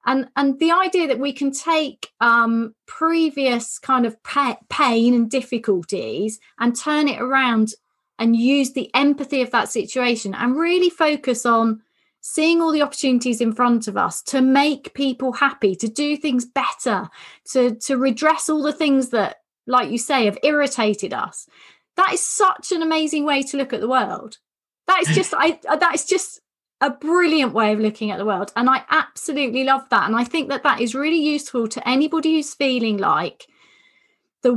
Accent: British